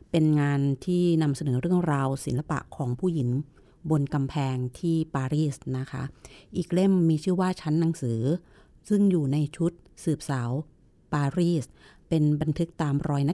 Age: 30-49